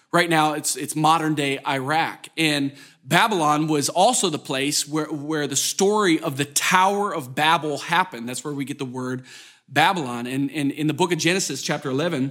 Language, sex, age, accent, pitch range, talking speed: English, male, 40-59, American, 145-200 Hz, 180 wpm